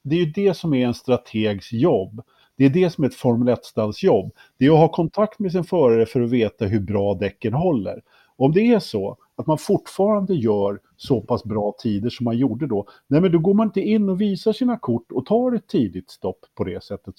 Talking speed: 240 wpm